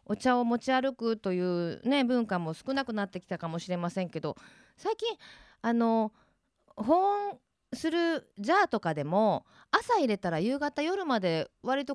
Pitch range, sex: 170-265 Hz, female